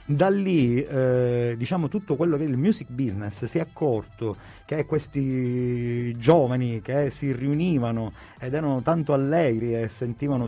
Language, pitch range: Italian, 120-150 Hz